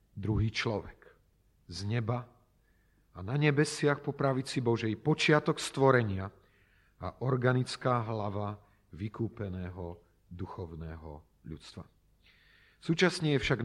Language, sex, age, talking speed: Slovak, male, 40-59, 90 wpm